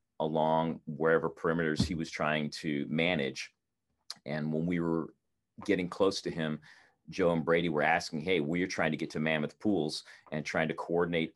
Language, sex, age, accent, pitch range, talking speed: English, male, 40-59, American, 75-80 Hz, 180 wpm